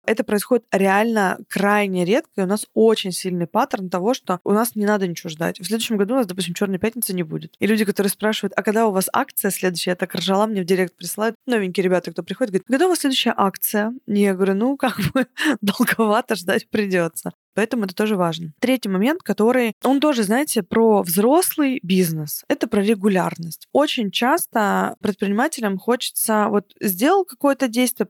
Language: Russian